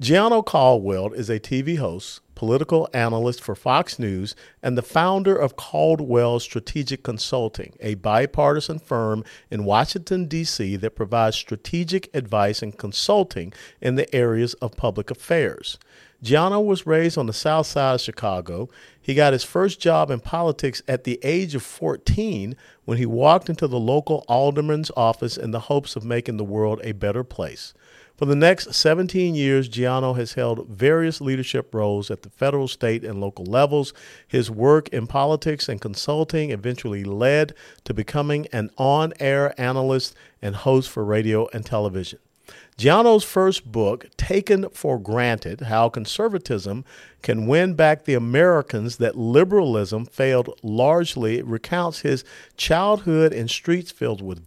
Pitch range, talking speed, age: 110-150 Hz, 150 wpm, 50-69